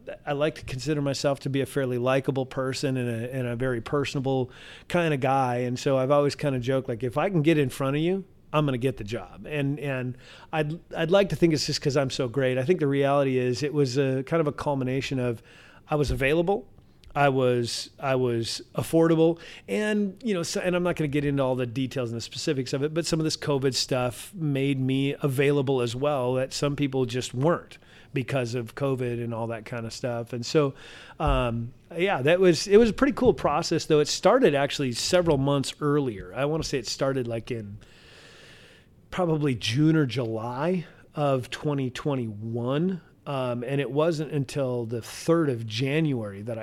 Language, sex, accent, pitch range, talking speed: English, male, American, 125-150 Hz, 210 wpm